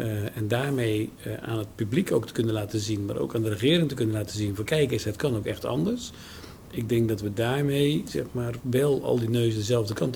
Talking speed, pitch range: 250 wpm, 110-130 Hz